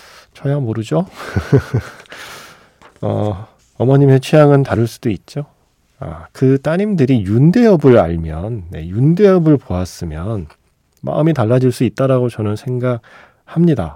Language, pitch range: Korean, 100-140 Hz